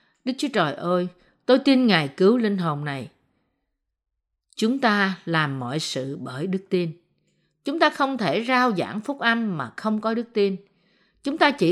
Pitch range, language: 175-240 Hz, Vietnamese